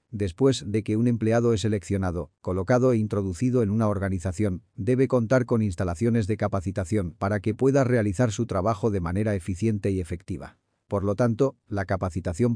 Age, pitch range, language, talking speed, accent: 40-59, 95-120 Hz, Spanish, 165 wpm, Spanish